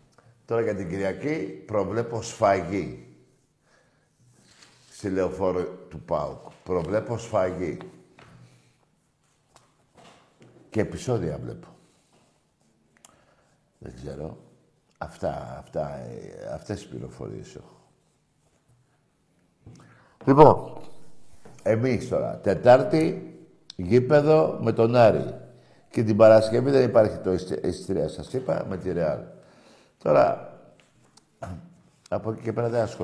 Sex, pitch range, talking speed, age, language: male, 100-125 Hz, 90 wpm, 60-79, Greek